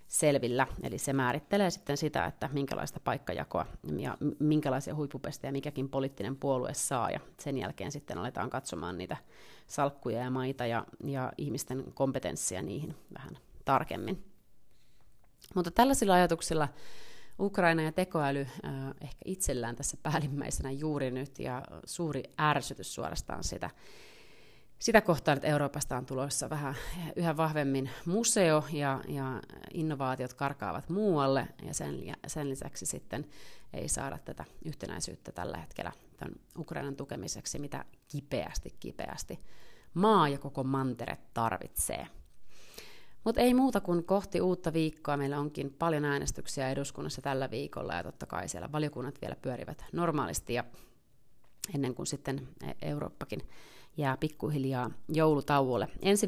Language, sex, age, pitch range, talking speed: Finnish, female, 30-49, 135-160 Hz, 125 wpm